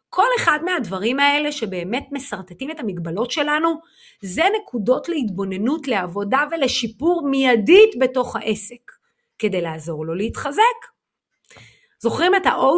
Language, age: Hebrew, 30-49